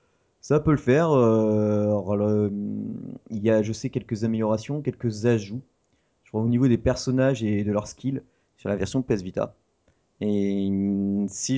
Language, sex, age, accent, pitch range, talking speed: French, male, 30-49, French, 105-135 Hz, 165 wpm